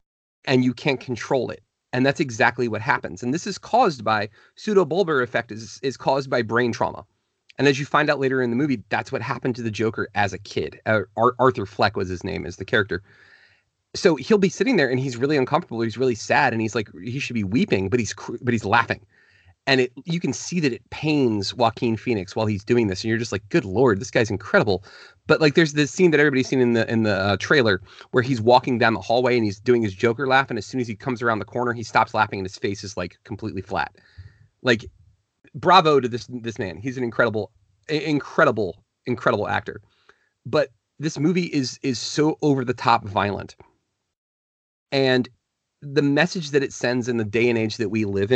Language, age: English, 30-49